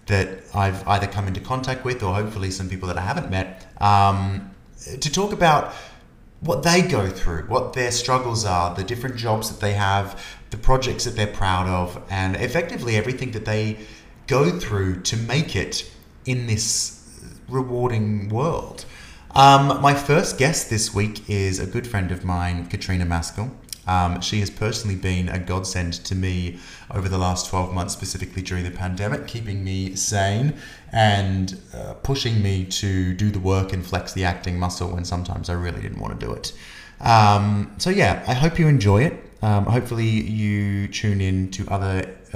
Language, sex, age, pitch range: English, male, 30-49, 95-115 Hz